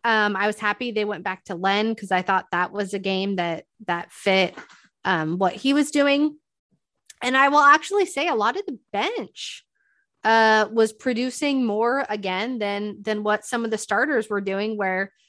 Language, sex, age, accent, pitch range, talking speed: English, female, 20-39, American, 195-250 Hz, 190 wpm